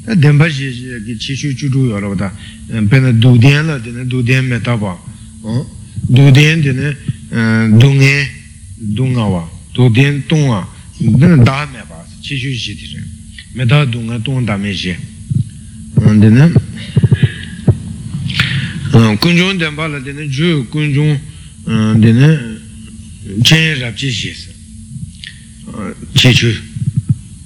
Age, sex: 60-79, male